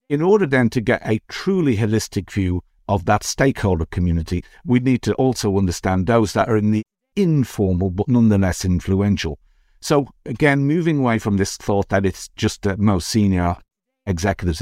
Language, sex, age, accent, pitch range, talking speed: English, male, 50-69, British, 95-125 Hz, 170 wpm